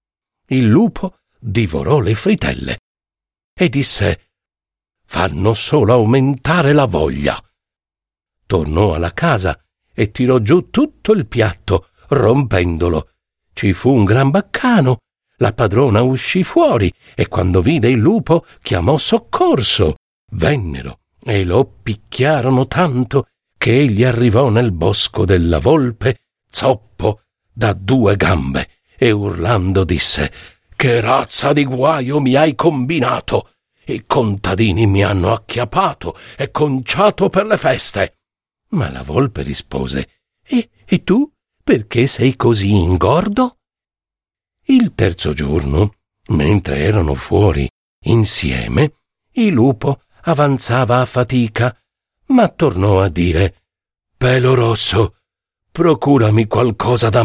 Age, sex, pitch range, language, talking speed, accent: 60-79, male, 95-140 Hz, Italian, 110 wpm, native